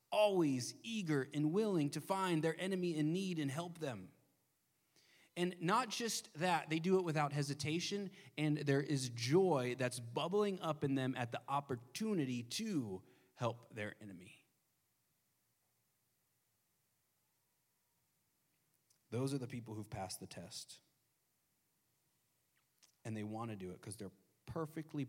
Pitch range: 120-165 Hz